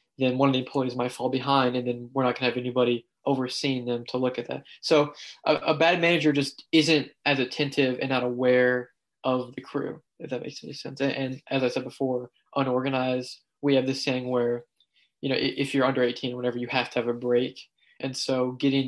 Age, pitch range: 20-39, 125-140 Hz